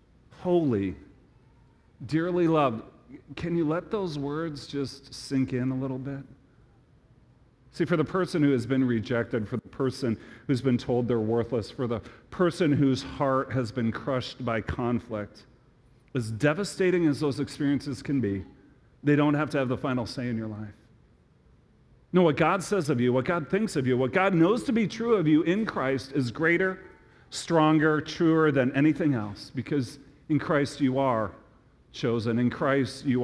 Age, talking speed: 40-59, 170 wpm